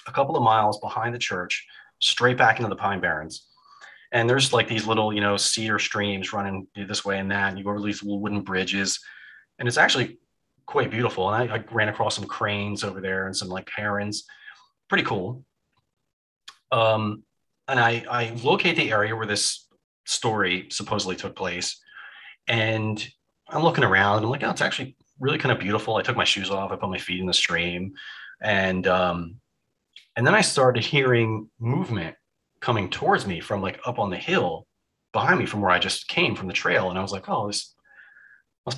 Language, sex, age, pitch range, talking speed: English, male, 30-49, 100-120 Hz, 195 wpm